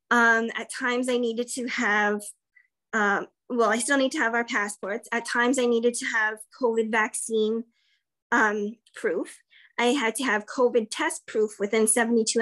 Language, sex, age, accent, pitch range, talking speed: English, female, 20-39, American, 220-255 Hz, 170 wpm